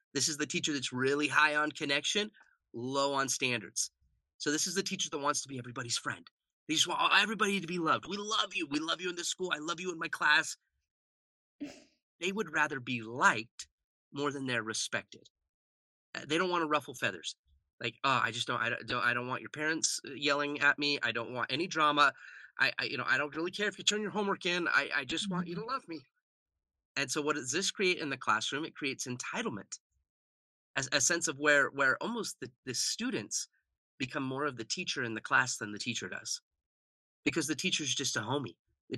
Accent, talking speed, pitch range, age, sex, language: American, 220 wpm, 120-165 Hz, 30-49, male, English